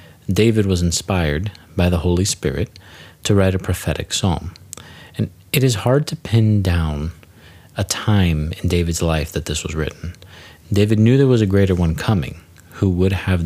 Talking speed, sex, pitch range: 175 wpm, male, 80-100 Hz